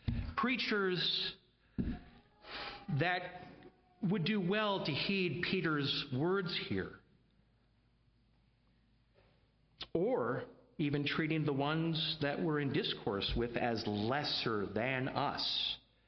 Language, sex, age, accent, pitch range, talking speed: English, male, 50-69, American, 125-175 Hz, 90 wpm